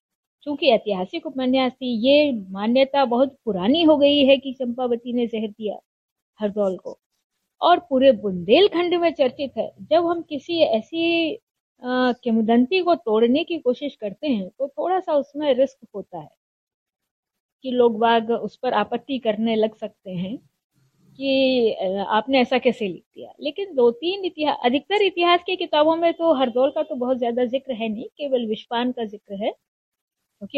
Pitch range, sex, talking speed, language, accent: 230-335 Hz, female, 160 wpm, Hindi, native